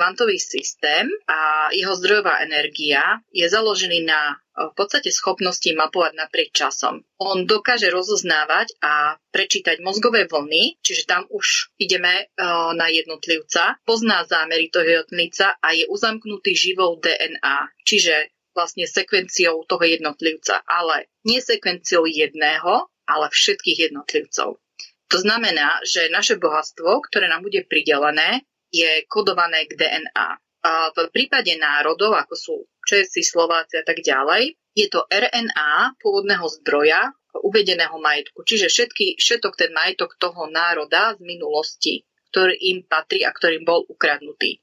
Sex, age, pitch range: female, 30-49, 160-270 Hz